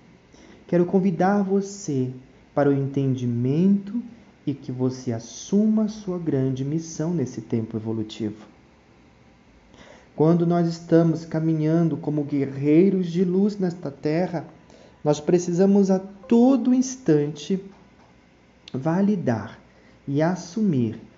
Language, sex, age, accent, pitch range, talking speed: Portuguese, male, 40-59, Brazilian, 120-180 Hz, 100 wpm